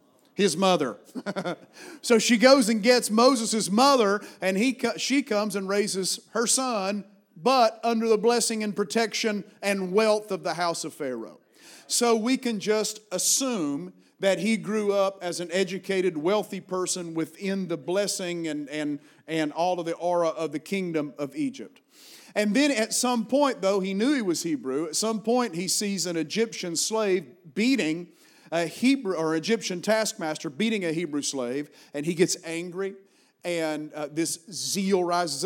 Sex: male